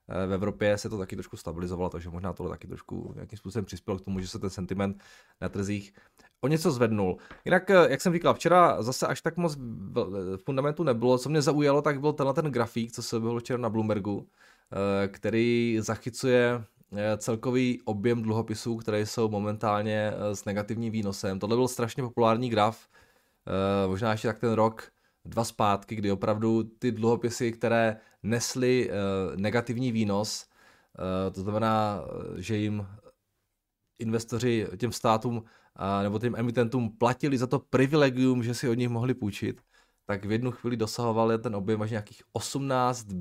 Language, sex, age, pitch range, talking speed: Czech, male, 20-39, 100-120 Hz, 155 wpm